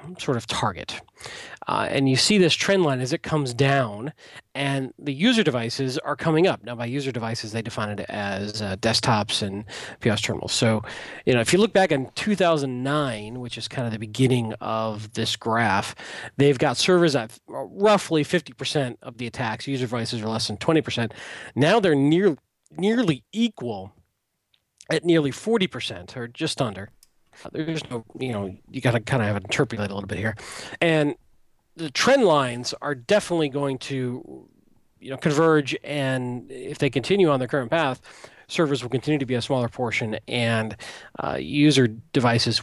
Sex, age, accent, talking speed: male, 40-59, American, 175 wpm